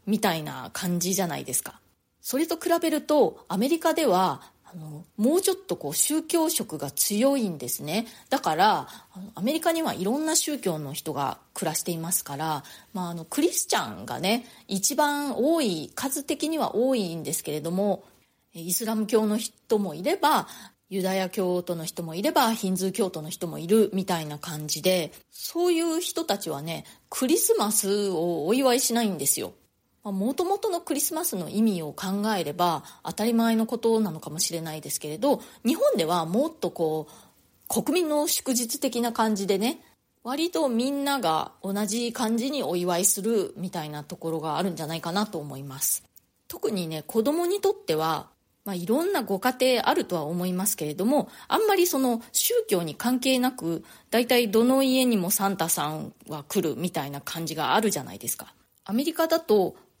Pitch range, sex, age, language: 170-270 Hz, female, 30-49, Japanese